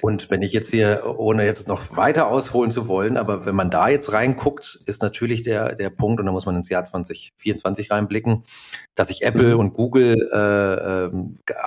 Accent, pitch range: German, 95-115 Hz